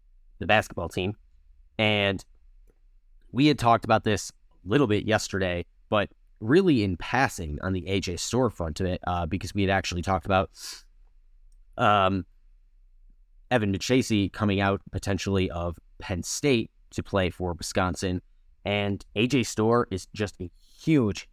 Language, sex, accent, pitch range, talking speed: English, male, American, 85-120 Hz, 145 wpm